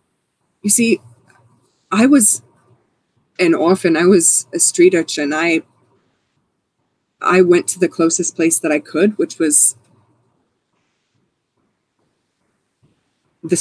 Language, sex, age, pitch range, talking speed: English, female, 20-39, 165-245 Hz, 105 wpm